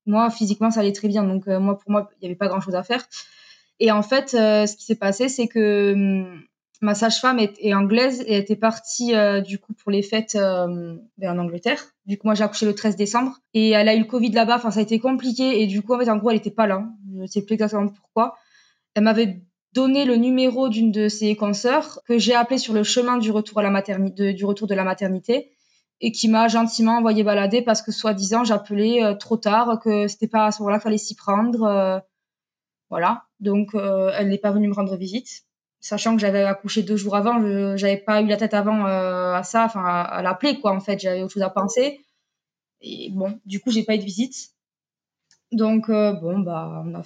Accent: French